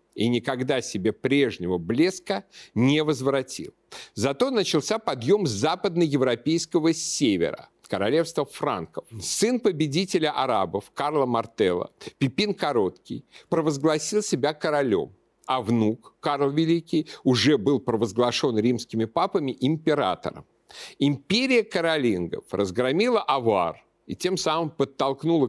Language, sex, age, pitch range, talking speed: Russian, male, 50-69, 120-170 Hz, 100 wpm